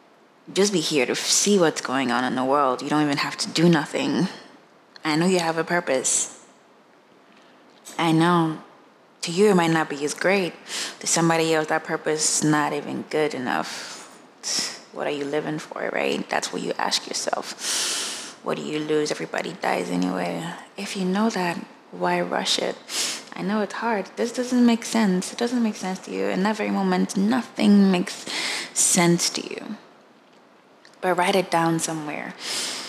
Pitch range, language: 155-195 Hz, English